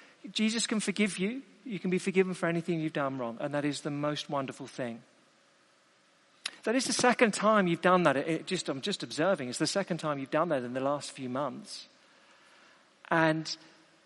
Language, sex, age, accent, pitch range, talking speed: English, male, 50-69, British, 150-205 Hz, 195 wpm